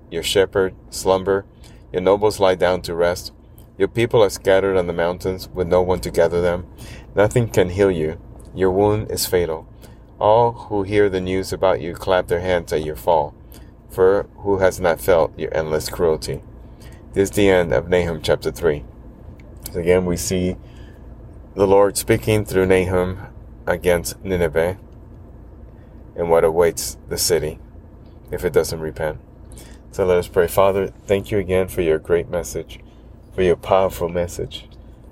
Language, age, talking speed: English, 30-49, 160 wpm